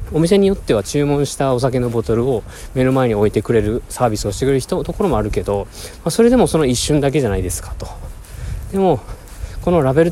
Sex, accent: male, native